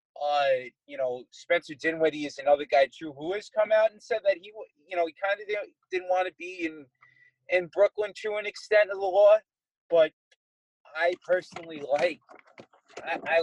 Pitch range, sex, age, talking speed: 155-210 Hz, male, 30-49, 185 wpm